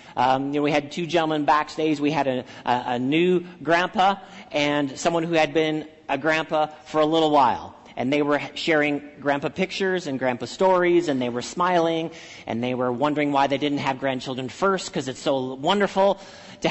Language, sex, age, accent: English, male, 40-59, American